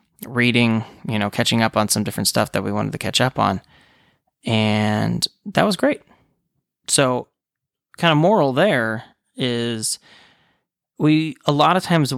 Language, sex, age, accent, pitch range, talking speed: English, male, 20-39, American, 110-135 Hz, 155 wpm